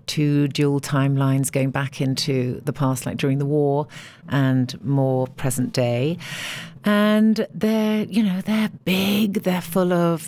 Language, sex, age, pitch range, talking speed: Dutch, female, 50-69, 145-180 Hz, 145 wpm